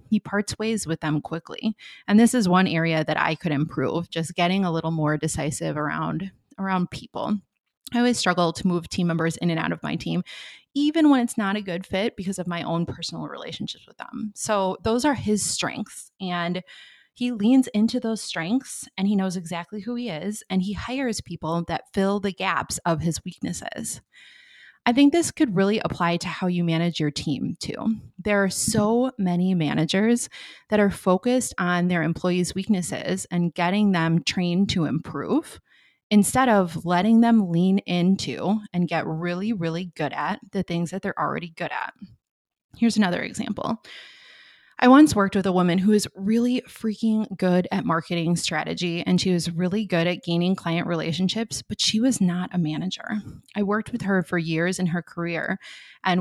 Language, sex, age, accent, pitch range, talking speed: English, female, 20-39, American, 170-215 Hz, 185 wpm